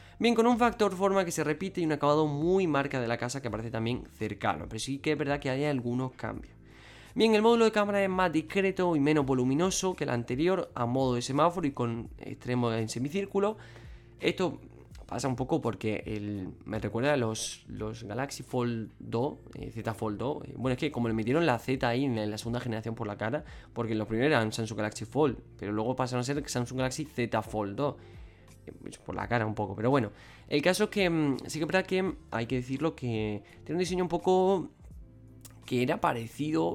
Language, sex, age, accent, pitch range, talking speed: Spanish, male, 20-39, Spanish, 115-155 Hz, 215 wpm